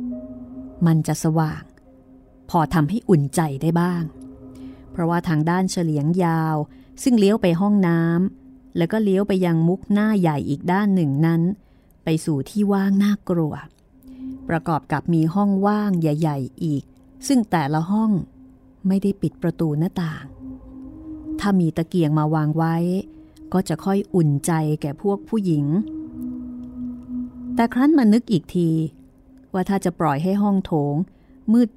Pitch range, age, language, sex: 155-210 Hz, 30-49, Thai, female